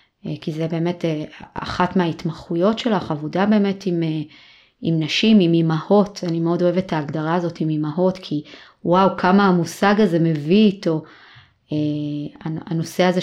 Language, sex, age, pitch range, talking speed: Hebrew, female, 30-49, 165-195 Hz, 120 wpm